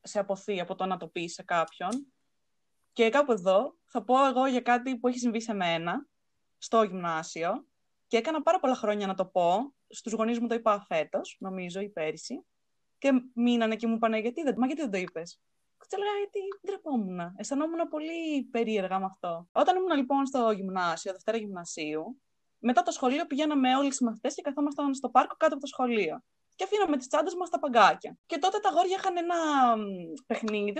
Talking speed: 190 wpm